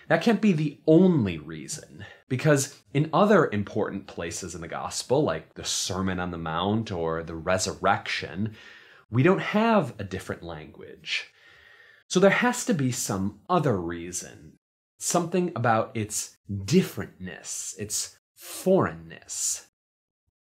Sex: male